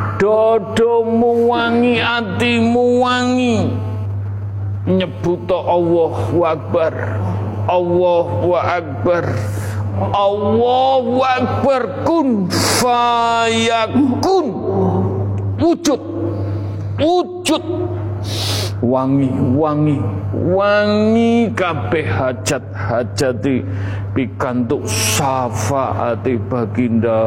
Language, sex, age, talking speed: Indonesian, male, 50-69, 65 wpm